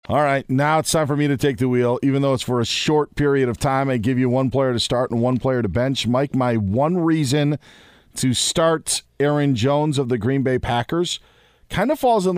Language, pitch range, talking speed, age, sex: English, 115-150 Hz, 240 wpm, 40-59, male